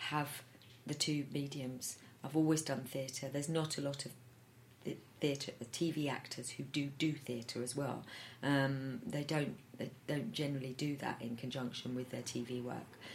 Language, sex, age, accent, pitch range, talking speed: English, female, 40-59, British, 135-160 Hz, 175 wpm